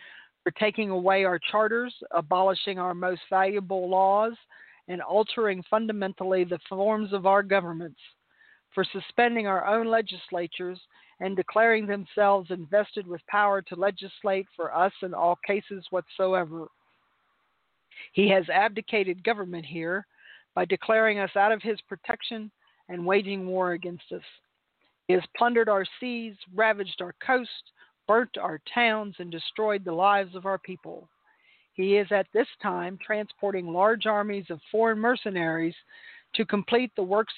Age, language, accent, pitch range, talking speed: 50-69, English, American, 180-215 Hz, 140 wpm